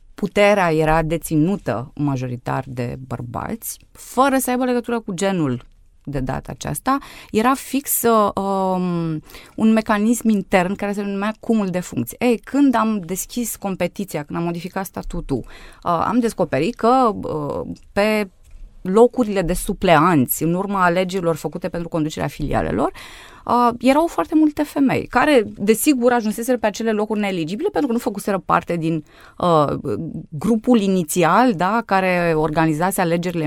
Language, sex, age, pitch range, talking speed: Romanian, female, 20-39, 160-225 Hz, 140 wpm